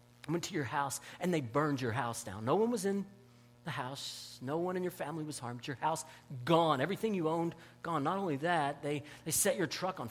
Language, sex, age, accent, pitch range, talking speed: English, male, 40-59, American, 120-195 Hz, 230 wpm